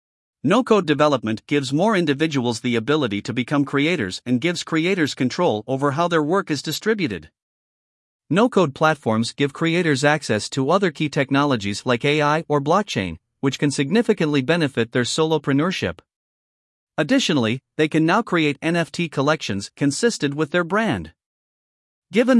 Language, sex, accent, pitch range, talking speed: English, male, American, 135-170 Hz, 135 wpm